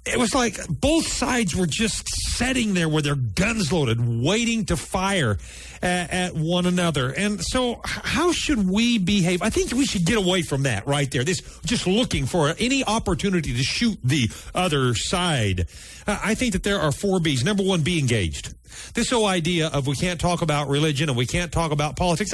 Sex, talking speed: male, 195 wpm